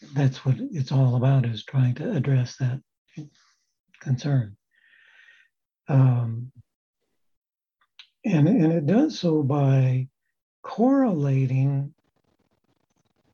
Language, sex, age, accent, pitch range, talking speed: English, male, 60-79, American, 130-160 Hz, 85 wpm